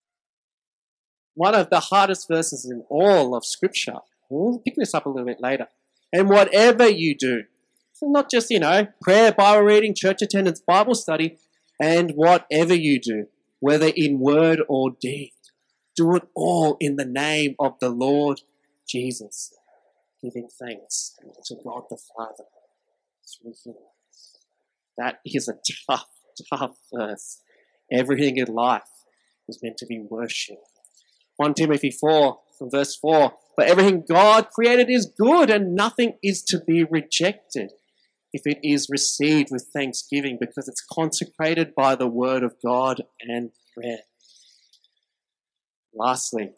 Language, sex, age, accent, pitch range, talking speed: English, male, 30-49, Australian, 125-170 Hz, 135 wpm